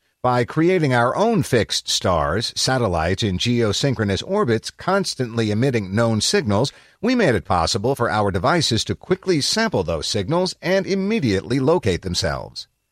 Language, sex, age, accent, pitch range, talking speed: English, male, 50-69, American, 100-135 Hz, 140 wpm